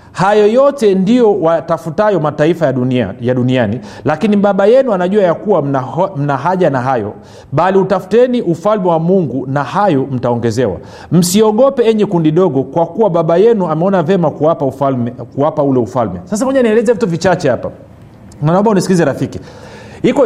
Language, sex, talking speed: Swahili, male, 150 wpm